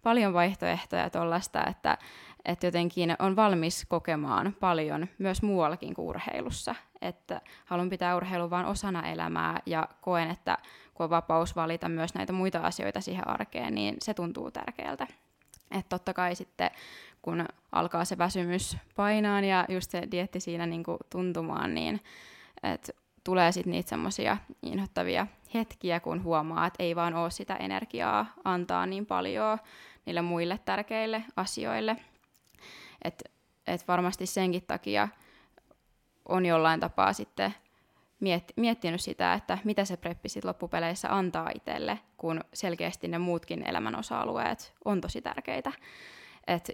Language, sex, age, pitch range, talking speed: Finnish, female, 20-39, 170-190 Hz, 135 wpm